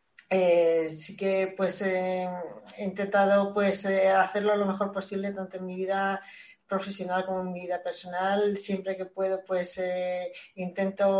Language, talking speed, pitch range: Spanish, 155 wpm, 180-205 Hz